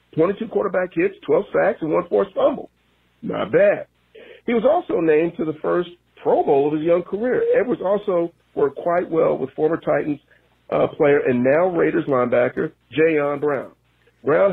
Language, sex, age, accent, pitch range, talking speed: English, male, 40-59, American, 120-165 Hz, 170 wpm